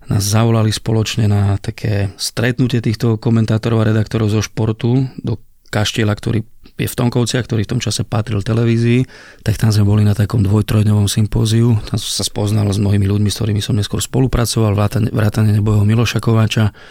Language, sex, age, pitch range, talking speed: Slovak, male, 30-49, 105-115 Hz, 170 wpm